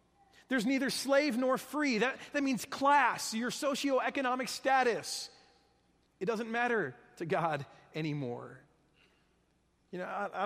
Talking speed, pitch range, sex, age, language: 125 wpm, 180-250 Hz, male, 40-59, English